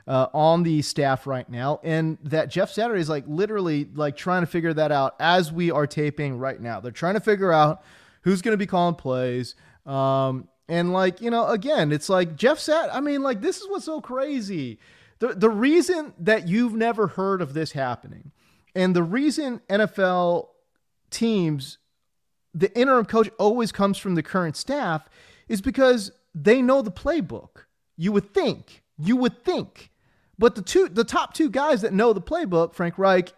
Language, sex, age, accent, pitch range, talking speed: English, male, 30-49, American, 150-230 Hz, 185 wpm